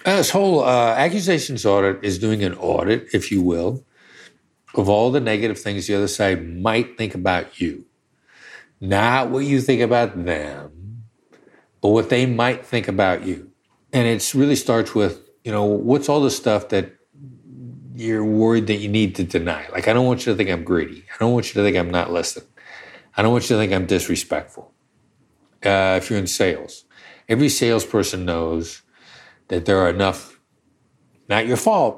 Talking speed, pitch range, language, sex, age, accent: 185 wpm, 95-120 Hz, English, male, 50-69, American